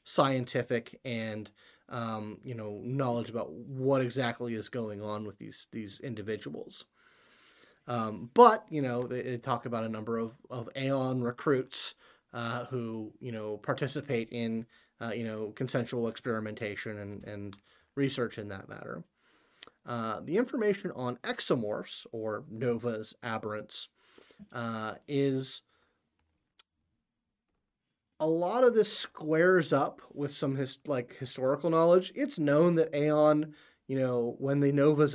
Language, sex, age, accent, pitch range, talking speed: English, male, 30-49, American, 115-140 Hz, 135 wpm